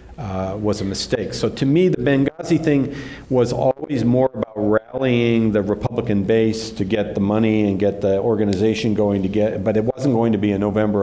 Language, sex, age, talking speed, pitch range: English, male, 50-69, 200 wpm, 105-130 Hz